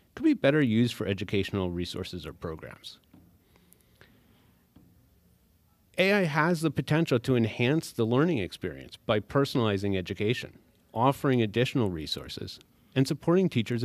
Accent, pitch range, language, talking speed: American, 95-135 Hz, English, 115 wpm